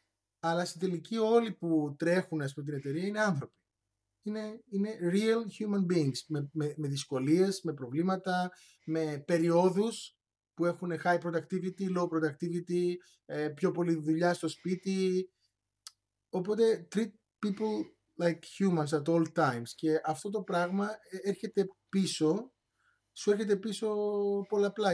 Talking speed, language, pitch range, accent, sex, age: 130 wpm, Greek, 155-210 Hz, native, male, 30-49